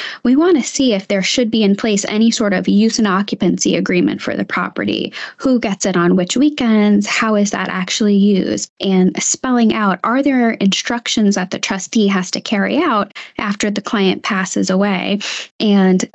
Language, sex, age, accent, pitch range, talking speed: English, female, 10-29, American, 185-230 Hz, 185 wpm